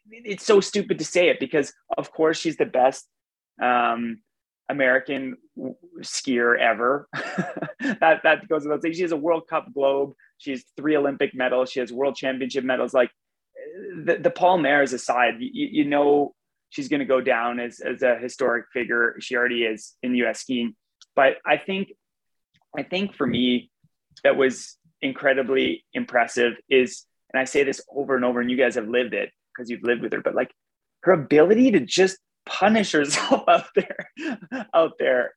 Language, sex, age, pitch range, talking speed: English, male, 30-49, 125-175 Hz, 180 wpm